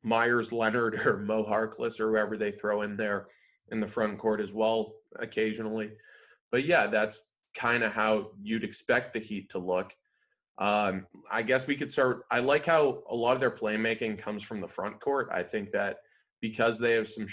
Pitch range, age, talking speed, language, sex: 105-115 Hz, 20-39, 195 wpm, English, male